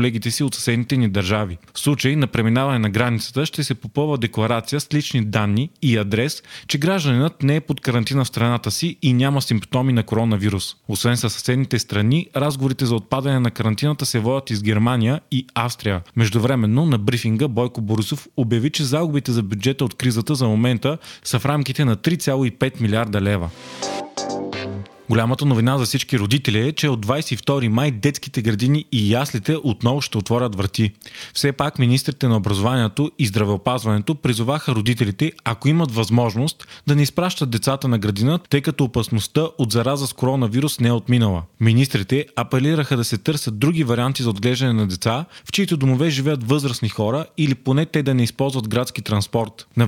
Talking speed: 170 wpm